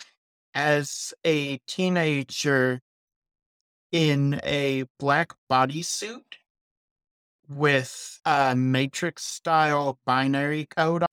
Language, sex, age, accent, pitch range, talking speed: English, male, 50-69, American, 130-165 Hz, 70 wpm